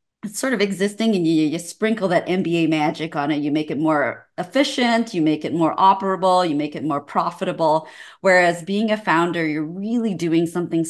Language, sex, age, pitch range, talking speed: English, female, 30-49, 155-185 Hz, 195 wpm